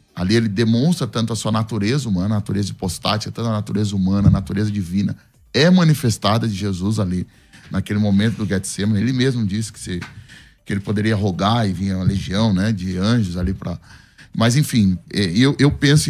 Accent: Brazilian